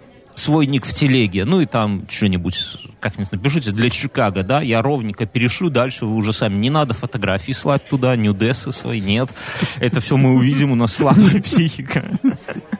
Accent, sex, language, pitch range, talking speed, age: native, male, Russian, 105-130 Hz, 175 wpm, 30-49